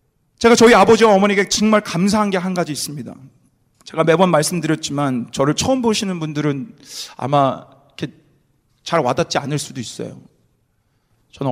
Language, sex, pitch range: Korean, male, 135-225 Hz